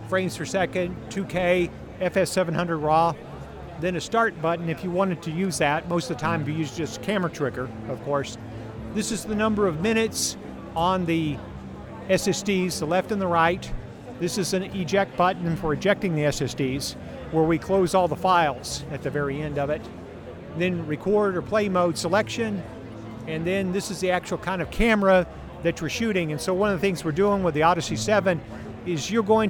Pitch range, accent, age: 145-185 Hz, American, 50-69